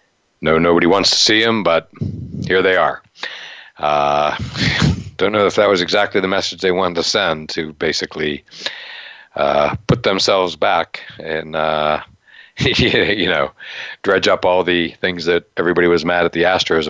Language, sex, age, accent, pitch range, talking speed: English, male, 60-79, American, 80-90 Hz, 160 wpm